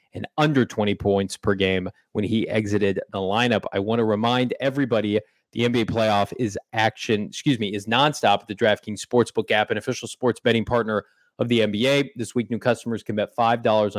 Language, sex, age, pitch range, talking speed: English, male, 30-49, 105-120 Hz, 195 wpm